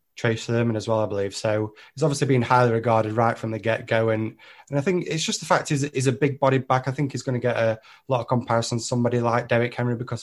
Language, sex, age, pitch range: English, male, 20-39, 110-130 Hz